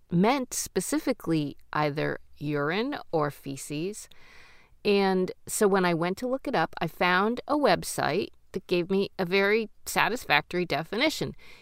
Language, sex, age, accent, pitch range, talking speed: English, female, 40-59, American, 150-220 Hz, 135 wpm